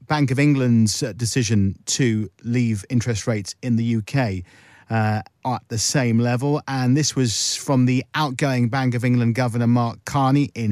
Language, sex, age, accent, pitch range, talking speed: English, male, 50-69, British, 115-155 Hz, 160 wpm